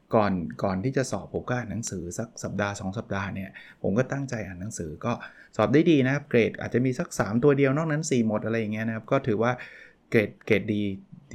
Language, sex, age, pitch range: Thai, male, 20-39, 110-135 Hz